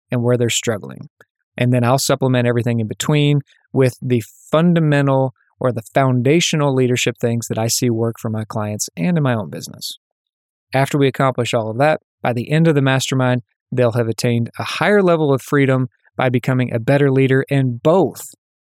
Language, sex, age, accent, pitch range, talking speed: English, male, 20-39, American, 125-150 Hz, 185 wpm